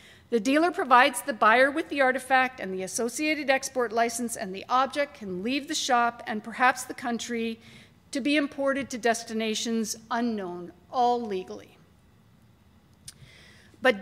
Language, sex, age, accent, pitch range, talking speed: English, female, 50-69, American, 235-300 Hz, 140 wpm